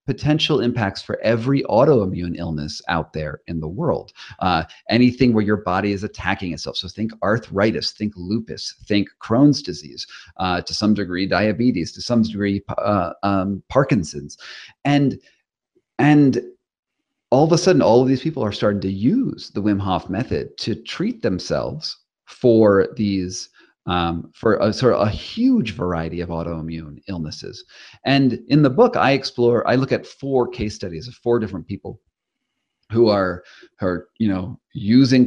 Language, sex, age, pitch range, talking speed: English, male, 40-59, 95-120 Hz, 160 wpm